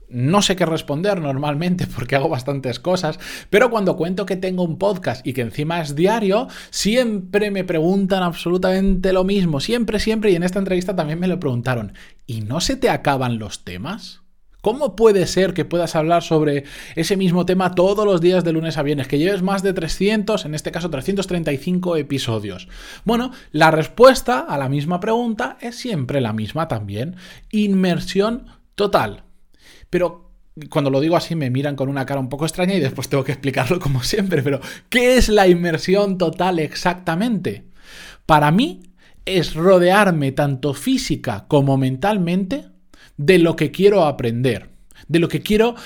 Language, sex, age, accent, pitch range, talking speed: Spanish, male, 20-39, Spanish, 140-195 Hz, 170 wpm